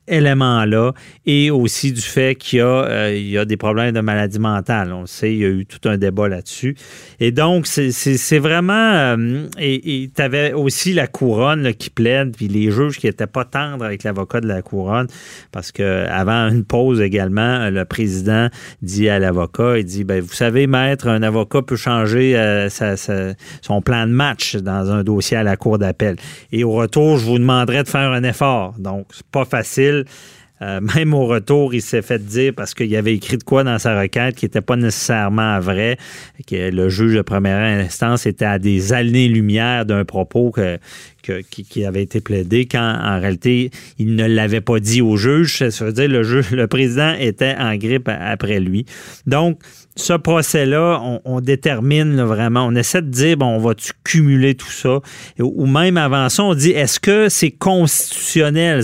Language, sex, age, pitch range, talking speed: French, male, 30-49, 105-140 Hz, 200 wpm